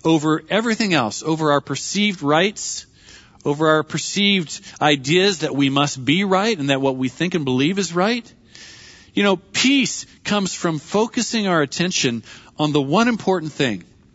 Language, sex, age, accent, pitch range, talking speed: English, male, 40-59, American, 125-170 Hz, 160 wpm